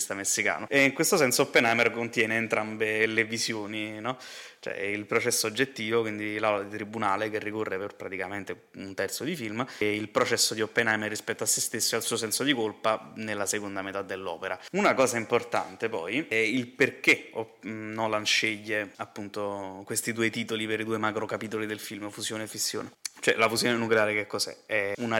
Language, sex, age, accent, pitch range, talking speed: Italian, male, 20-39, native, 105-115 Hz, 185 wpm